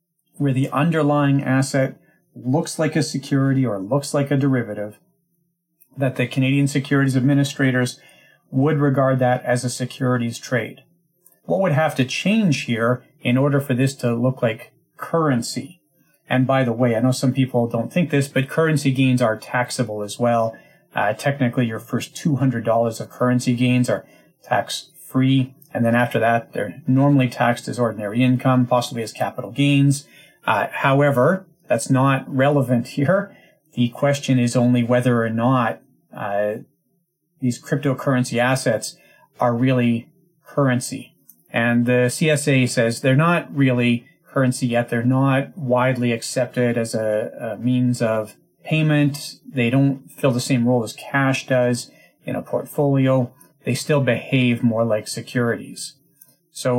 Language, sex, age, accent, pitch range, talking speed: English, male, 40-59, American, 120-145 Hz, 145 wpm